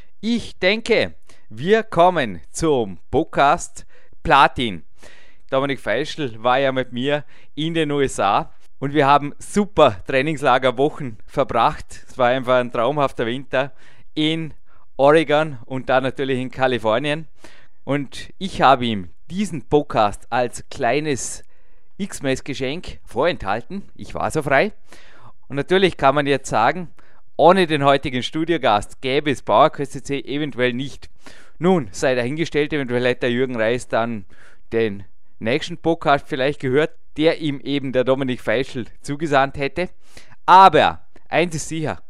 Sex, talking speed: male, 130 wpm